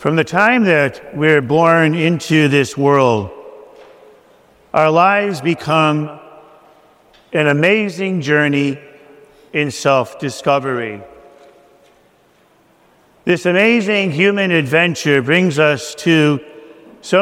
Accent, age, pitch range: American, 50-69, 150-185 Hz